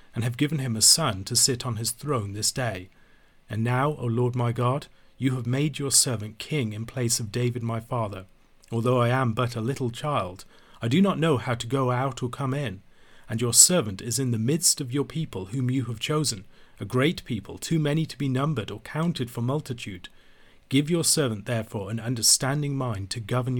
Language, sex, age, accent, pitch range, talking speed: English, male, 40-59, British, 115-135 Hz, 215 wpm